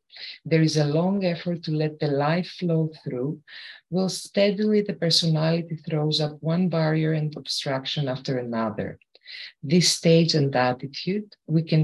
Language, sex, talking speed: English, female, 145 wpm